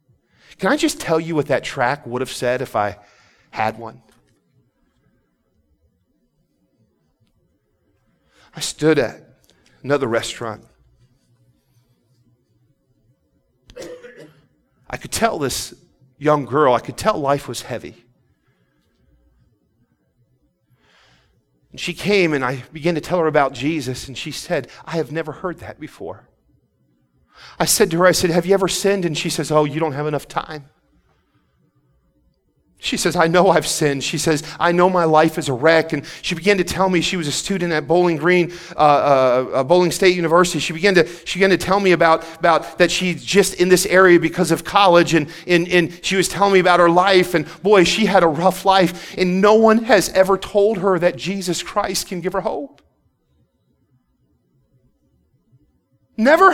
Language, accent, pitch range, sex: English, American, 135-185 Hz, male